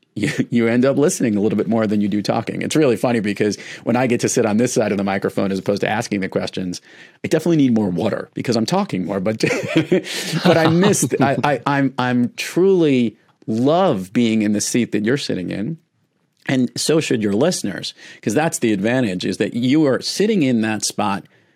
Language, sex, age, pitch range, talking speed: English, male, 40-59, 100-155 Hz, 215 wpm